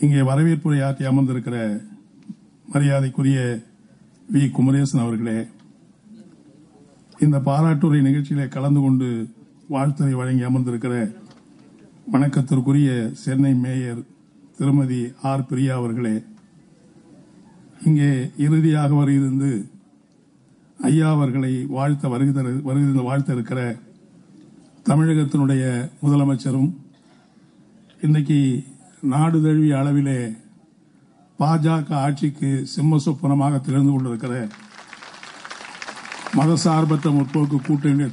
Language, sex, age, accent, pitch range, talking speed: Tamil, male, 50-69, native, 130-150 Hz, 65 wpm